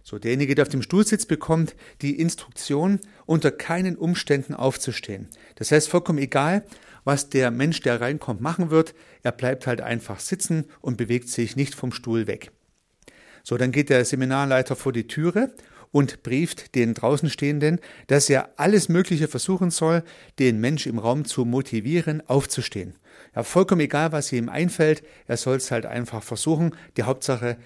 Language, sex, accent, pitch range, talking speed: German, male, German, 125-155 Hz, 165 wpm